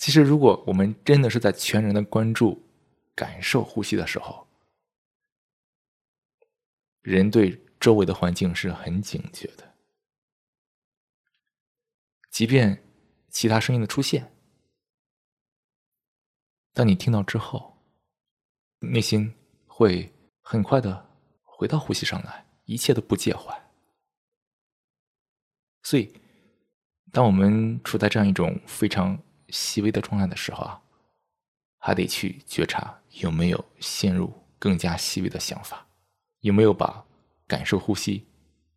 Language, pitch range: Chinese, 95-130 Hz